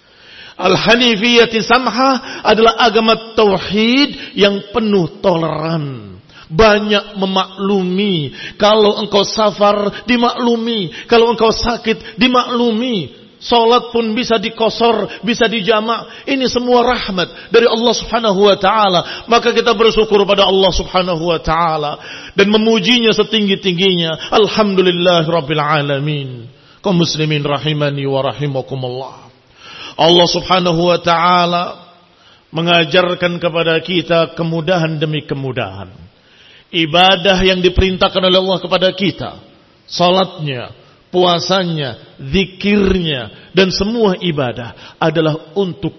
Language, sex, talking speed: Indonesian, male, 100 wpm